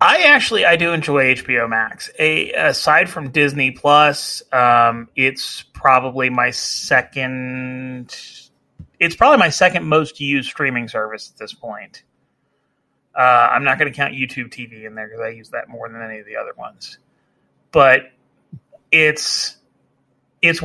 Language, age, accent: English, 30-49, American